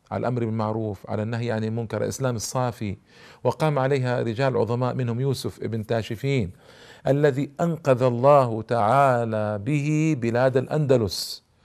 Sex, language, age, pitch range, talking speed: male, Arabic, 50-69, 120-145 Hz, 130 wpm